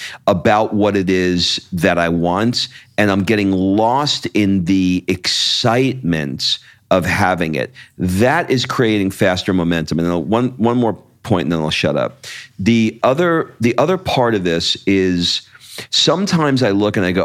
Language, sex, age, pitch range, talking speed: English, male, 50-69, 85-115 Hz, 165 wpm